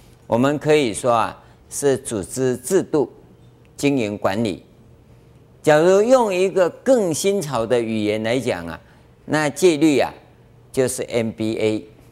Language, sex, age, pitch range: Chinese, male, 50-69, 115-150 Hz